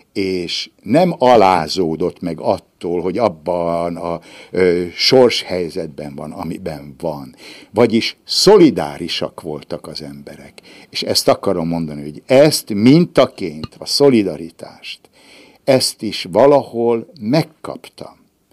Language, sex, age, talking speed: Hungarian, male, 60-79, 95 wpm